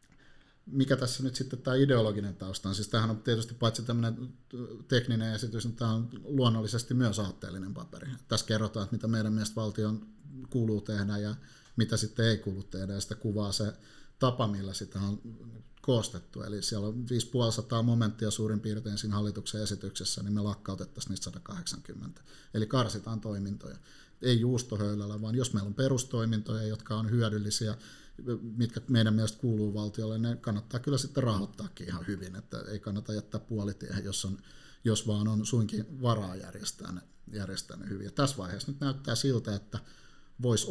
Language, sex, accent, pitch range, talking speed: Finnish, male, native, 105-120 Hz, 160 wpm